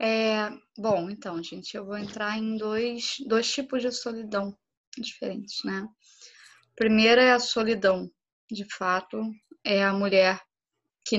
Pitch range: 195-230 Hz